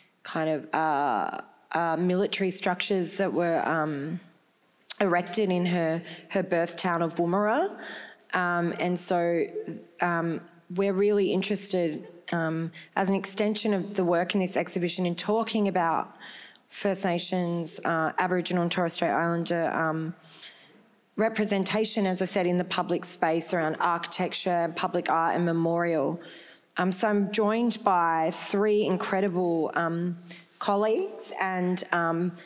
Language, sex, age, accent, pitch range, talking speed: English, female, 20-39, Australian, 170-195 Hz, 130 wpm